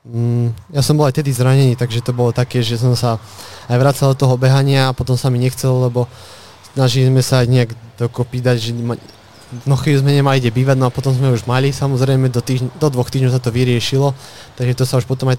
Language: Slovak